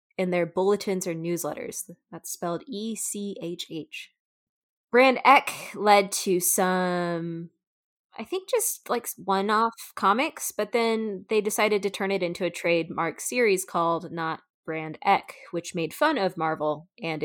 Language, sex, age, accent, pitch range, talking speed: English, female, 20-39, American, 175-220 Hz, 140 wpm